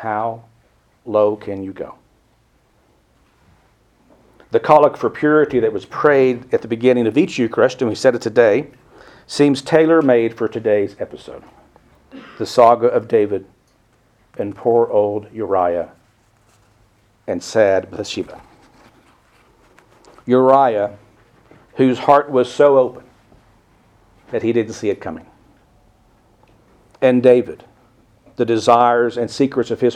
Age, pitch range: 50-69, 110-135 Hz